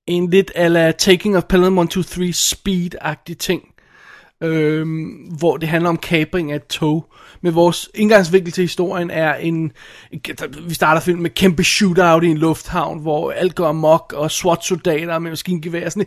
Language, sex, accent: Danish, male, native